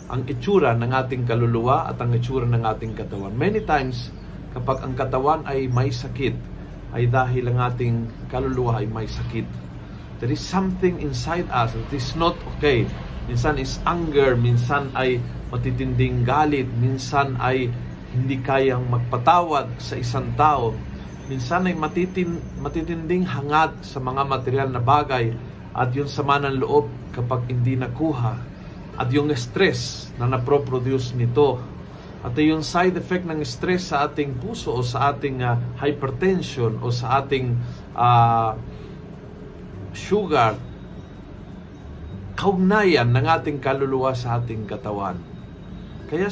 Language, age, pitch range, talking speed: Filipino, 40-59, 120-150 Hz, 130 wpm